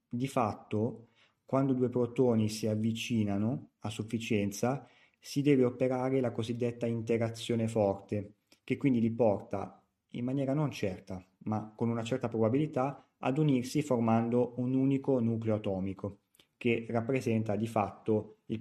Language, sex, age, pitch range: Italian, male, 30-49, 100-120 Hz